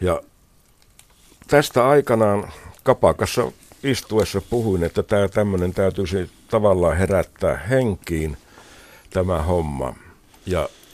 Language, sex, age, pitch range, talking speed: Finnish, male, 60-79, 80-105 Hz, 90 wpm